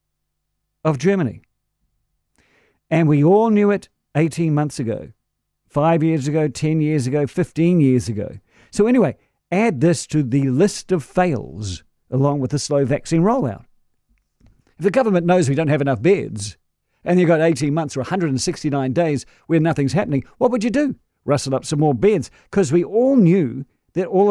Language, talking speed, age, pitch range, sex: English, 170 wpm, 50-69, 135-180 Hz, male